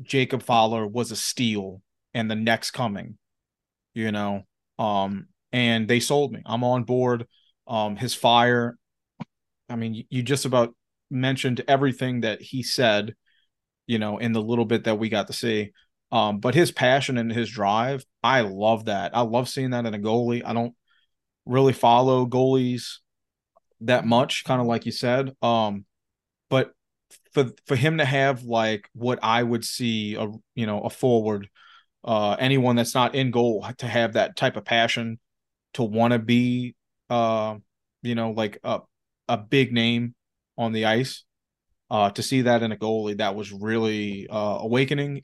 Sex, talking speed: male, 170 wpm